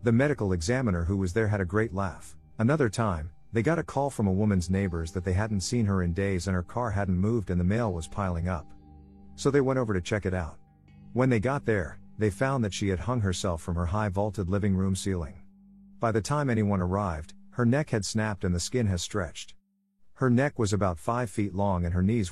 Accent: American